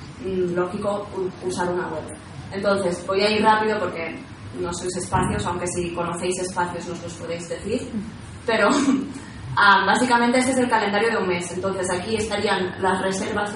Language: Spanish